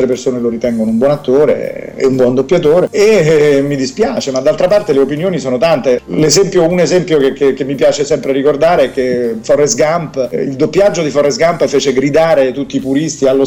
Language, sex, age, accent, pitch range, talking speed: Italian, male, 40-59, native, 125-155 Hz, 205 wpm